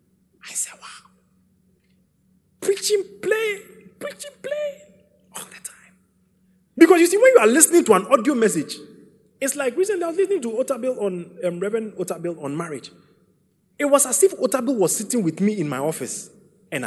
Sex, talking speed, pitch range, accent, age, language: male, 165 wpm, 180-260 Hz, Nigerian, 30-49, English